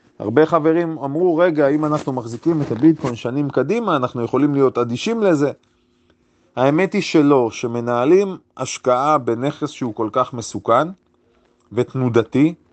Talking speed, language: 125 wpm, Hebrew